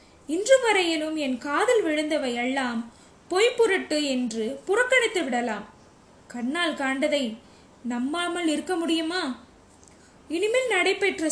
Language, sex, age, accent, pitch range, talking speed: Tamil, female, 20-39, native, 265-395 Hz, 90 wpm